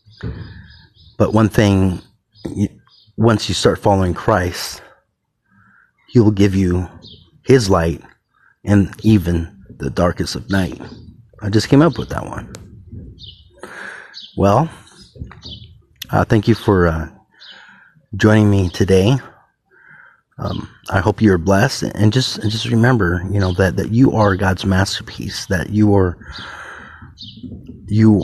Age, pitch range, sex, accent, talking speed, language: 30-49, 90-105 Hz, male, American, 125 wpm, English